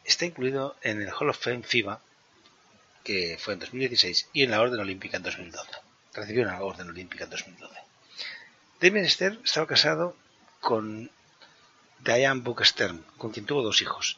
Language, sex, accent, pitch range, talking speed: Spanish, male, Spanish, 100-130 Hz, 150 wpm